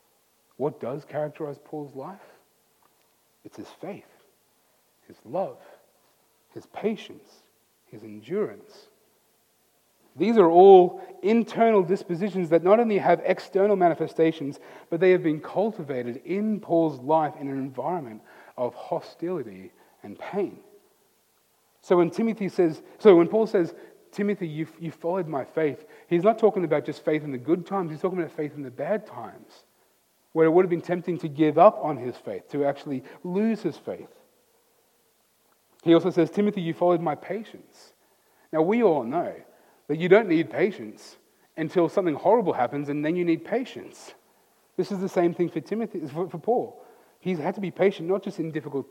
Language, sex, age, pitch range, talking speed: English, male, 40-59, 155-195 Hz, 165 wpm